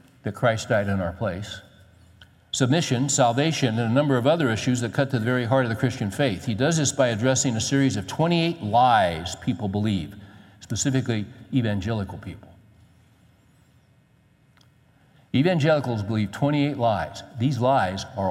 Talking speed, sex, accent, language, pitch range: 150 wpm, male, American, English, 95-125 Hz